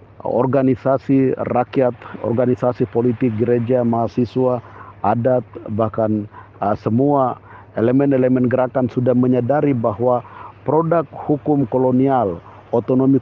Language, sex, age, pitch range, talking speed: Malay, male, 50-69, 110-130 Hz, 85 wpm